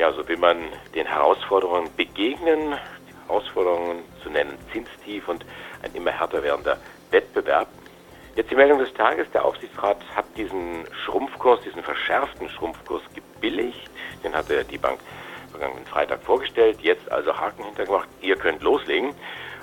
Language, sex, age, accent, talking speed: German, male, 60-79, German, 140 wpm